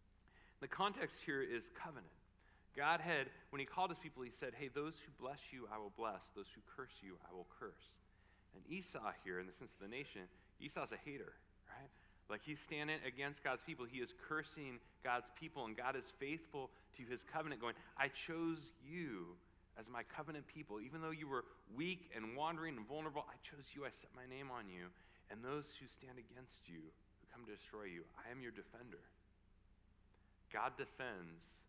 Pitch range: 95-130 Hz